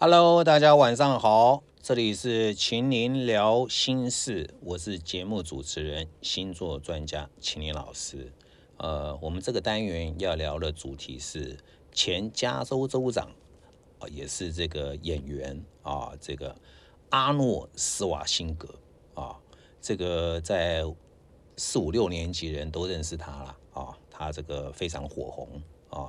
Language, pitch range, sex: English, 75-95 Hz, male